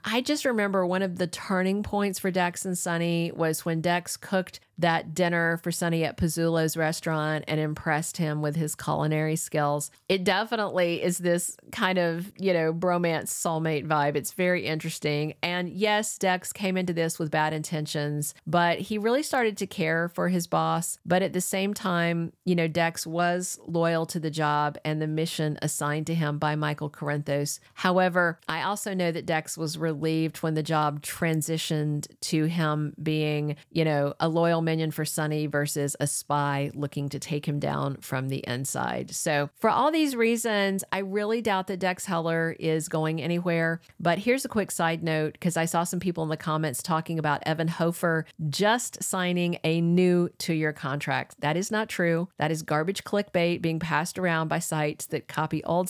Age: 40-59